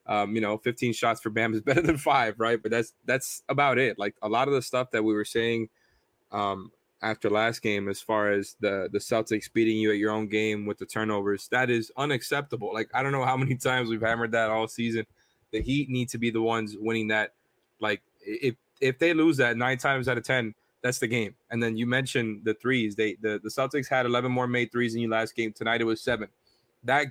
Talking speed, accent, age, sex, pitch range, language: 240 wpm, American, 20-39, male, 110-125 Hz, English